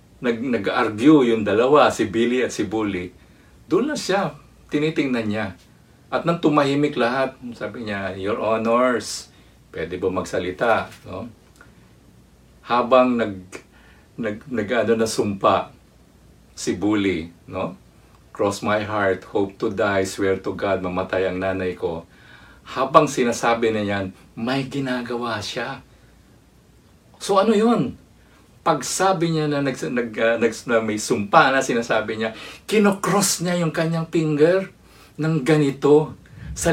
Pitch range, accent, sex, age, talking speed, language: 110-155 Hz, Filipino, male, 50-69, 125 wpm, English